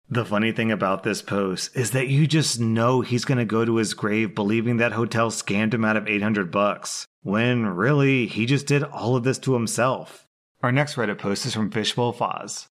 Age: 30-49